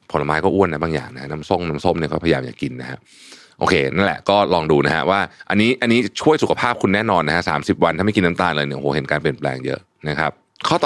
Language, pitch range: Thai, 75-105 Hz